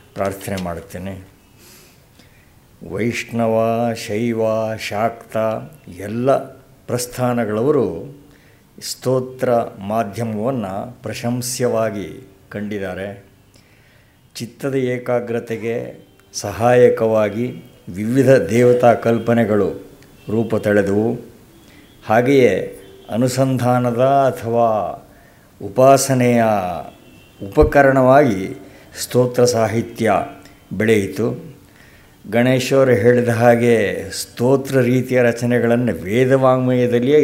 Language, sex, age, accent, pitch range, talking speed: Kannada, male, 60-79, native, 110-130 Hz, 55 wpm